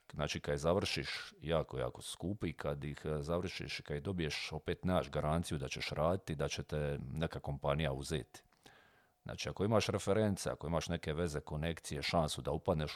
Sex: male